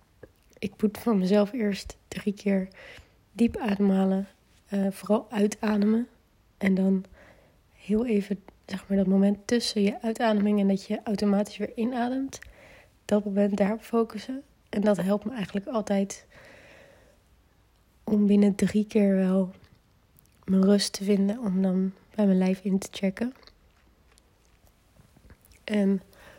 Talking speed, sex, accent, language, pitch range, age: 125 wpm, female, Dutch, Dutch, 195-220 Hz, 30-49